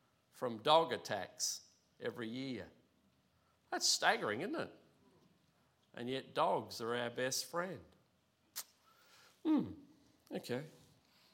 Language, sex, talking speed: English, male, 95 wpm